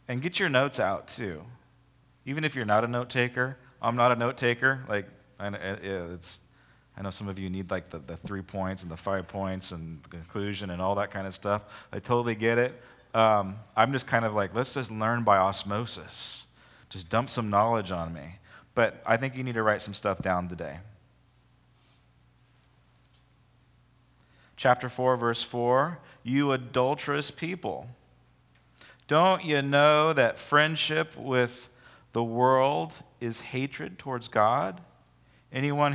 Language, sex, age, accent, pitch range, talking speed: English, male, 30-49, American, 105-135 Hz, 160 wpm